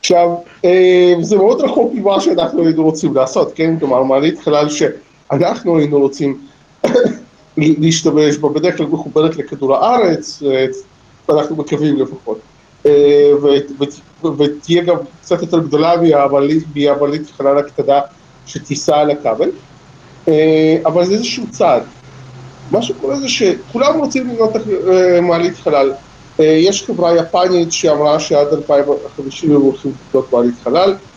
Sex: male